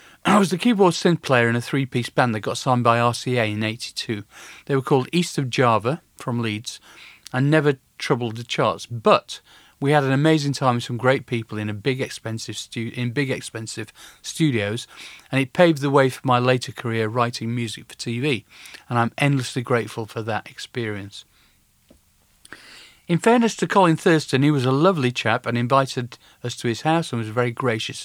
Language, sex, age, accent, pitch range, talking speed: English, male, 40-59, British, 115-145 Hz, 180 wpm